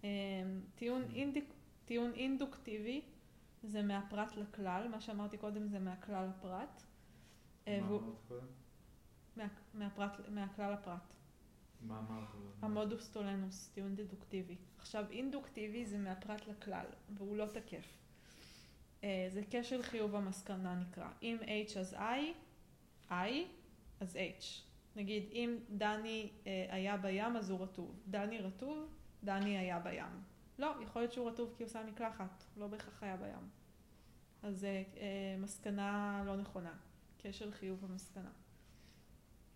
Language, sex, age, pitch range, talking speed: Hebrew, female, 20-39, 195-225 Hz, 115 wpm